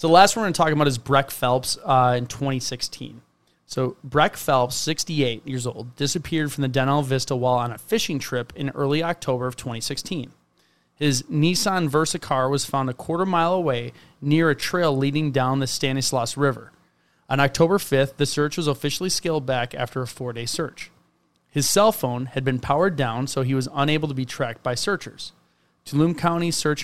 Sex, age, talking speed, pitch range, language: male, 30-49, 190 wpm, 130-155 Hz, English